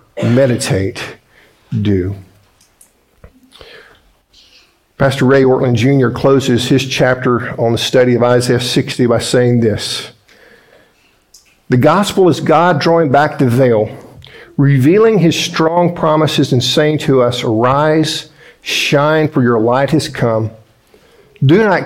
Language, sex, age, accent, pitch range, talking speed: English, male, 50-69, American, 110-145 Hz, 120 wpm